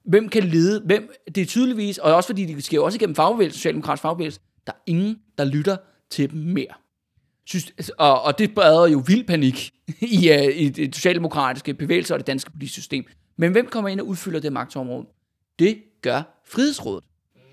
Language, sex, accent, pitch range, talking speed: Danish, male, native, 140-205 Hz, 195 wpm